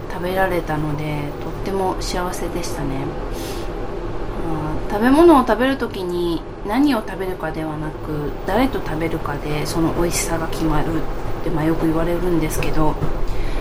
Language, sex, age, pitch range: Japanese, female, 20-39, 155-215 Hz